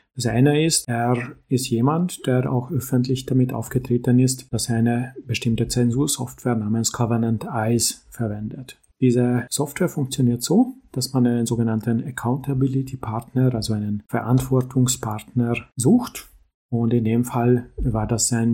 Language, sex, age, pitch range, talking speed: German, male, 40-59, 115-130 Hz, 135 wpm